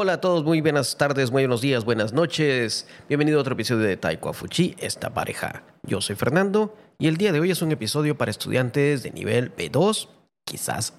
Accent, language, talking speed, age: Mexican, Spanish, 200 wpm, 40-59